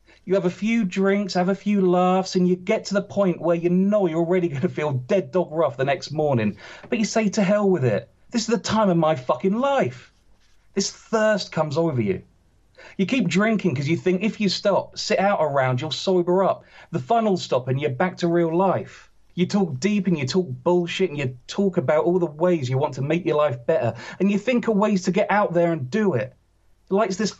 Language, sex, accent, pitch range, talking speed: English, male, British, 145-190 Hz, 240 wpm